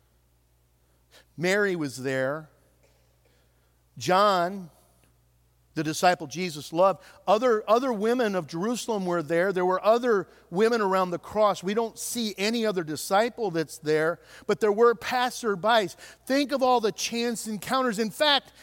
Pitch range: 140-230 Hz